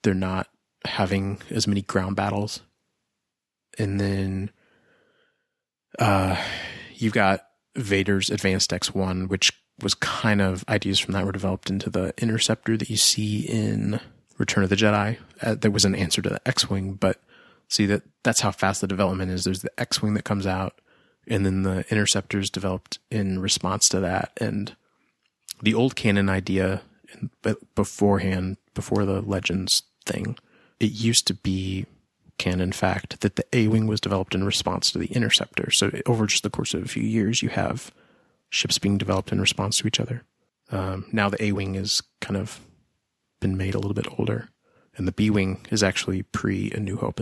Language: English